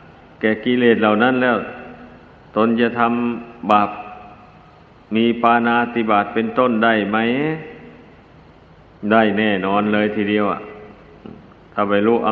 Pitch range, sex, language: 110-125 Hz, male, Thai